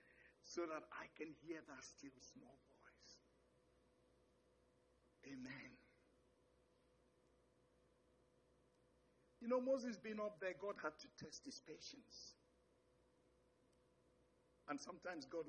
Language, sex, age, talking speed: English, male, 60-79, 95 wpm